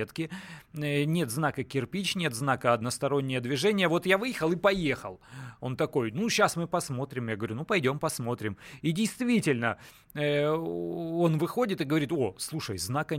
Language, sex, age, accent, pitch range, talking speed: Russian, male, 30-49, native, 130-170 Hz, 145 wpm